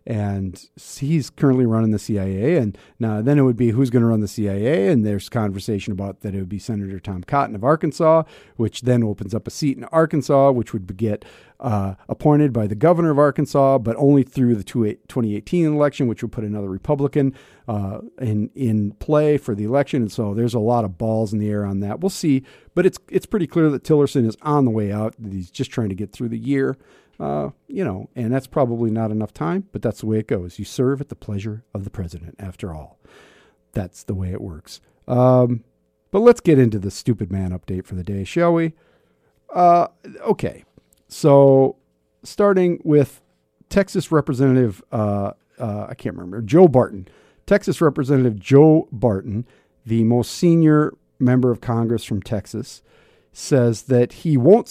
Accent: American